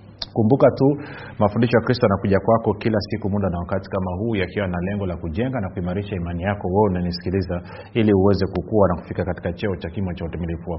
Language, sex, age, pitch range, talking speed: Swahili, male, 40-59, 95-115 Hz, 205 wpm